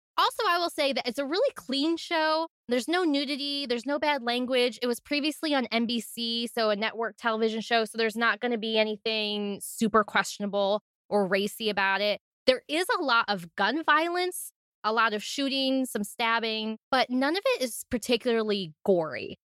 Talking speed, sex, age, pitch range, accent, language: 185 wpm, female, 20-39, 215-280 Hz, American, English